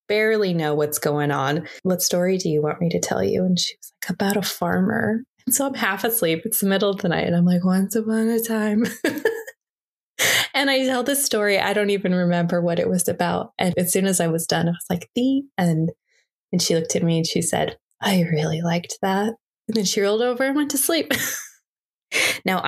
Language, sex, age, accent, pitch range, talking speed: English, female, 20-39, American, 165-220 Hz, 225 wpm